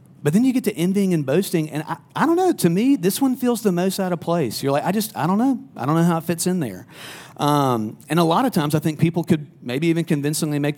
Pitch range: 125-165 Hz